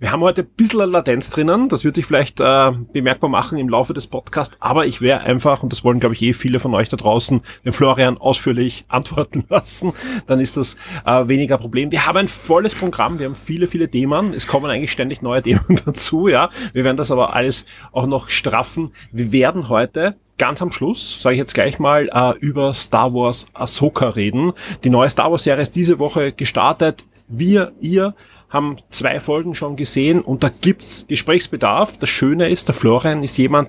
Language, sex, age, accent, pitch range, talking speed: German, male, 30-49, German, 125-165 Hz, 205 wpm